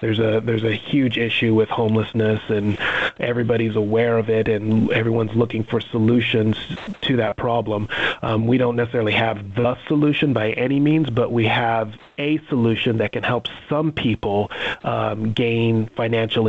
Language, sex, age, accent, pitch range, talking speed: English, male, 30-49, American, 110-120 Hz, 160 wpm